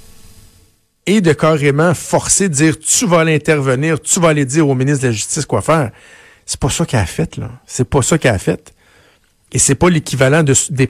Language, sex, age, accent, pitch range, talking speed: French, male, 60-79, Canadian, 125-165 Hz, 210 wpm